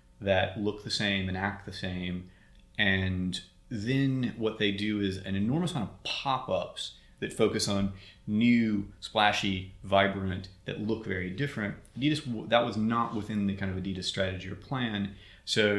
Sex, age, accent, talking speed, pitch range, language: male, 30-49, American, 155 wpm, 95-110 Hz, English